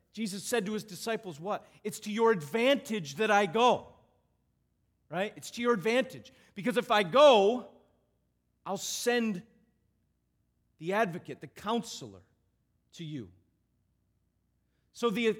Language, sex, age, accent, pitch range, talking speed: English, male, 40-59, American, 190-245 Hz, 125 wpm